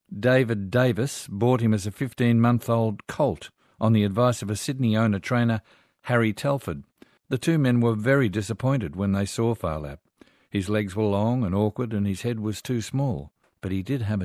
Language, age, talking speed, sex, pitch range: English, 50-69, 180 wpm, male, 105-125 Hz